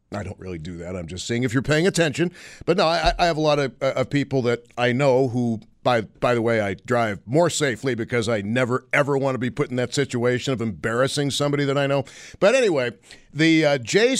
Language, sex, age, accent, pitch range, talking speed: English, male, 50-69, American, 125-160 Hz, 240 wpm